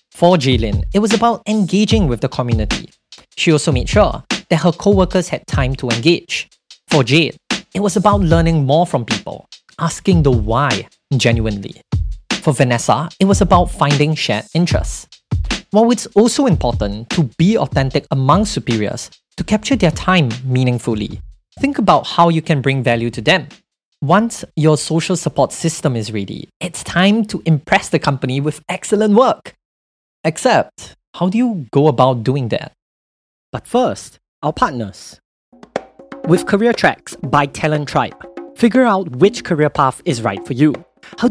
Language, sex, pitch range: English, male, 140-195 Hz